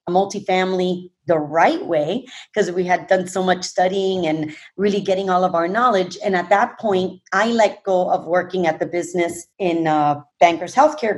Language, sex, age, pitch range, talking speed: English, female, 30-49, 175-210 Hz, 185 wpm